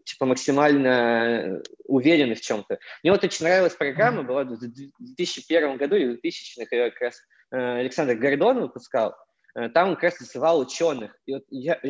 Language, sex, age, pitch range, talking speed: Russian, male, 20-39, 135-190 Hz, 145 wpm